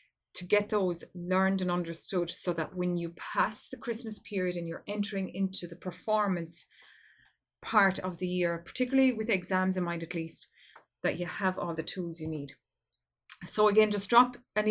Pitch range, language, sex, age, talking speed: 175-215 Hz, English, female, 30-49, 180 wpm